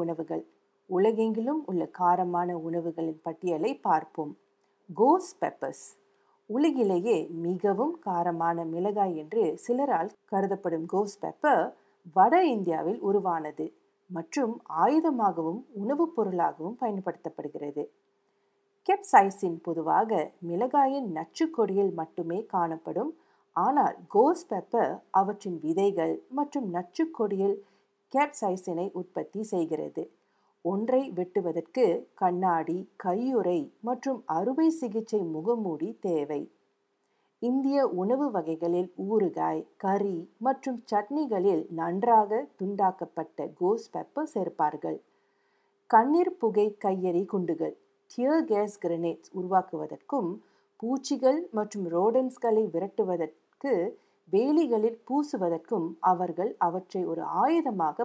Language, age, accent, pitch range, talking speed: Tamil, 50-69, native, 170-250 Hz, 80 wpm